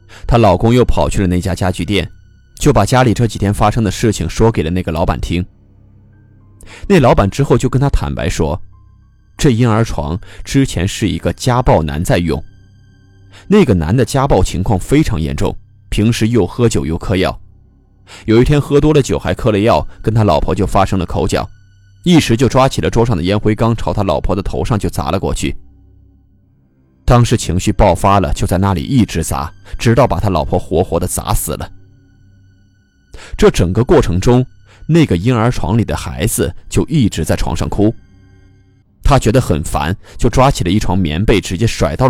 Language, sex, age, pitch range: Chinese, male, 20-39, 90-110 Hz